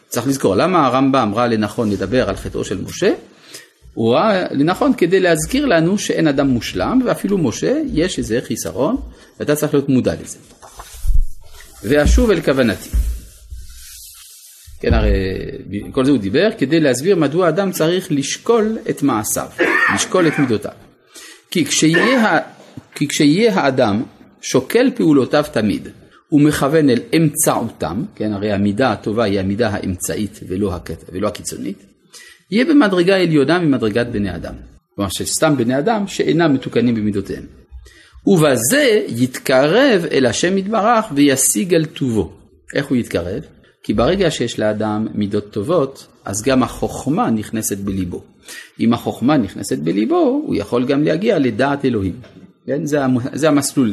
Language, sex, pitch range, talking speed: Hebrew, male, 100-155 Hz, 135 wpm